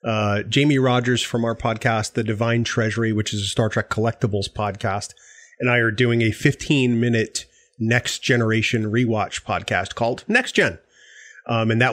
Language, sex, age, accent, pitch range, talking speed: English, male, 30-49, American, 115-140 Hz, 165 wpm